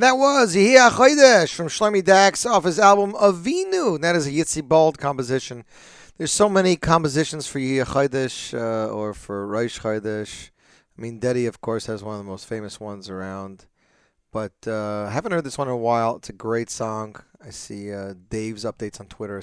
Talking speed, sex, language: 200 wpm, male, English